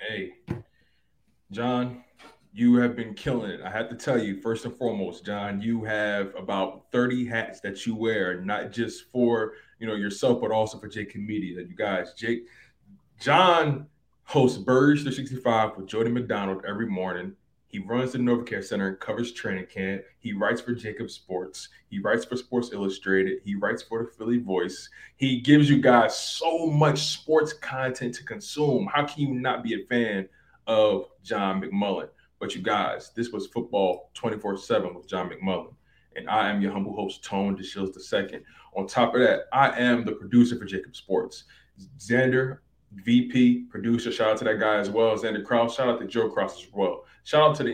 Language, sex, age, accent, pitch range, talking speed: English, male, 20-39, American, 100-125 Hz, 185 wpm